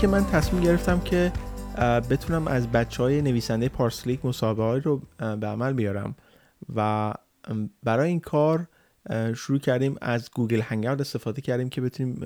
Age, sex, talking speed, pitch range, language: 30-49, male, 140 wpm, 115-135 Hz, Persian